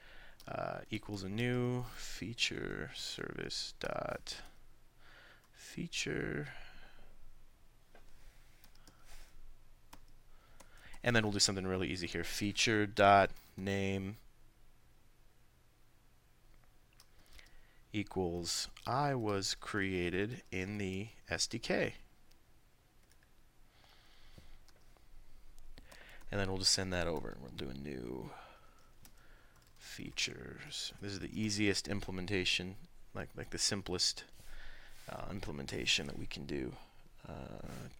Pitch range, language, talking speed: 90-105 Hz, English, 85 wpm